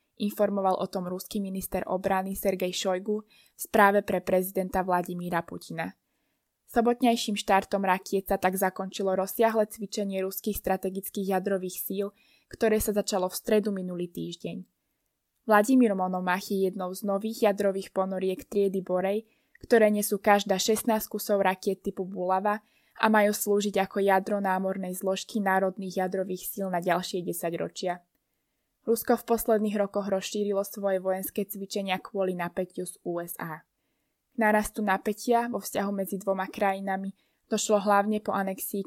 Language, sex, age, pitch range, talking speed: Slovak, female, 20-39, 190-210 Hz, 135 wpm